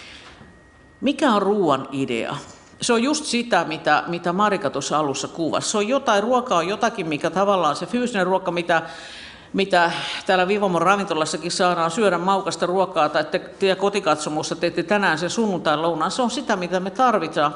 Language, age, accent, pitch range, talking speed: Finnish, 50-69, native, 160-220 Hz, 165 wpm